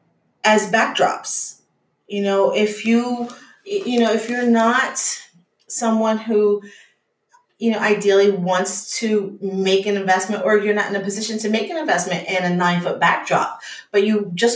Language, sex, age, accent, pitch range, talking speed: English, female, 40-59, American, 195-235 Hz, 155 wpm